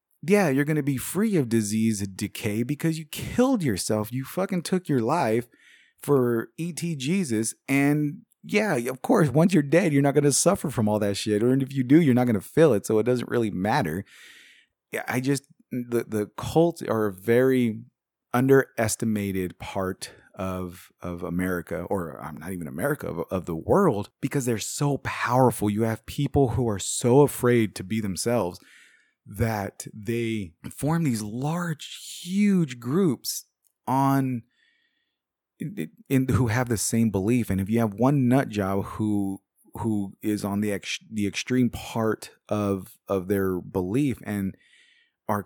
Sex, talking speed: male, 170 wpm